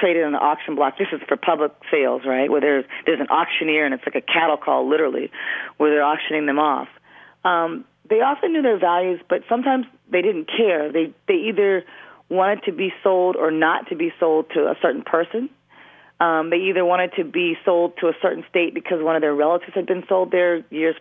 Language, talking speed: English, 215 wpm